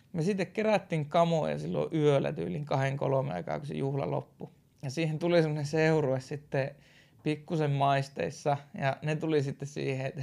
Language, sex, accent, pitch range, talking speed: Finnish, male, native, 135-165 Hz, 160 wpm